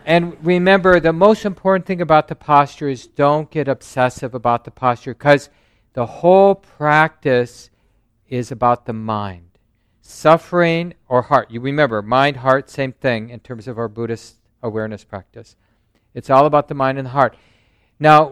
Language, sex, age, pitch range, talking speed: English, male, 50-69, 115-145 Hz, 160 wpm